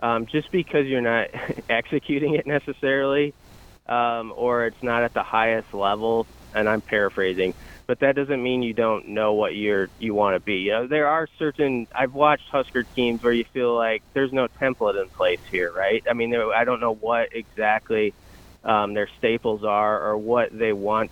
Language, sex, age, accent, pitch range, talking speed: English, male, 20-39, American, 110-135 Hz, 190 wpm